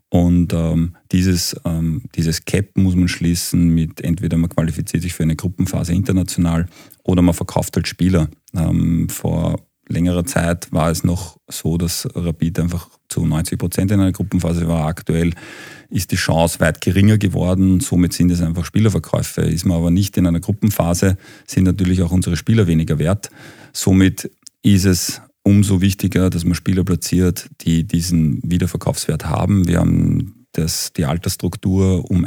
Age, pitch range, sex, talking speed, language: 40-59, 85-95 Hz, male, 160 wpm, German